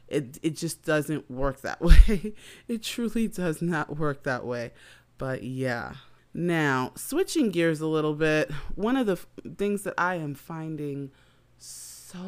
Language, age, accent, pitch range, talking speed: English, 30-49, American, 140-165 Hz, 155 wpm